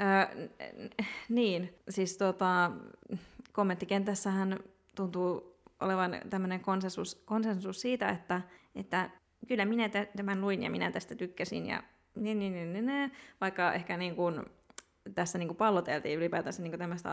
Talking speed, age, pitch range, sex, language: 120 wpm, 20-39, 175-205 Hz, female, Finnish